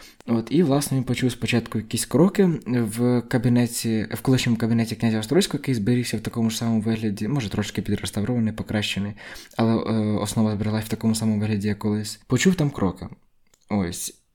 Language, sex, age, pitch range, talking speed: Ukrainian, male, 20-39, 105-125 Hz, 165 wpm